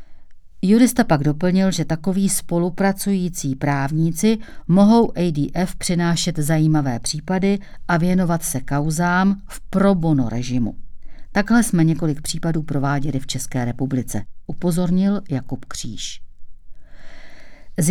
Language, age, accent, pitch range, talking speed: Czech, 50-69, native, 150-195 Hz, 105 wpm